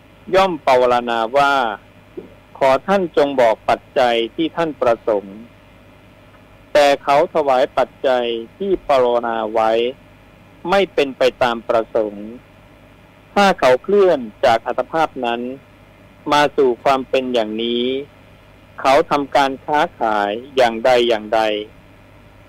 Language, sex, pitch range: Thai, male, 105-140 Hz